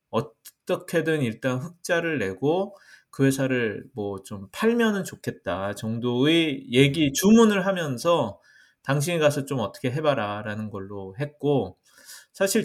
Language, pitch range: Korean, 110-150 Hz